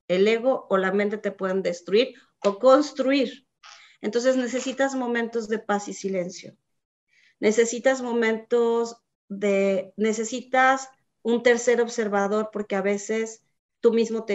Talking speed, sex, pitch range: 125 wpm, female, 205-235 Hz